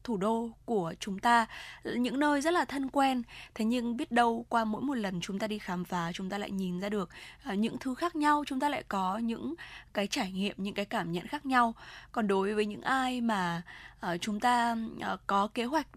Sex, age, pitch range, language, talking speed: female, 10-29, 200-255 Hz, Vietnamese, 220 wpm